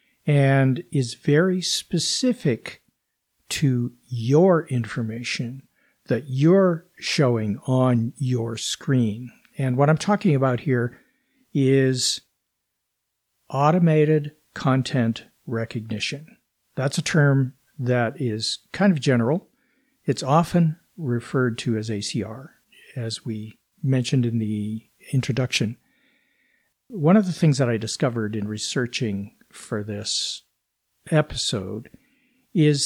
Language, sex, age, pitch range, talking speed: English, male, 50-69, 120-170 Hz, 100 wpm